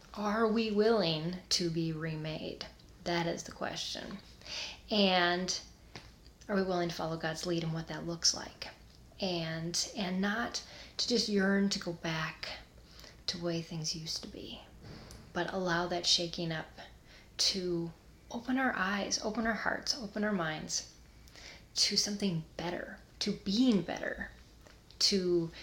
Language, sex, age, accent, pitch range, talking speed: English, female, 30-49, American, 170-210 Hz, 145 wpm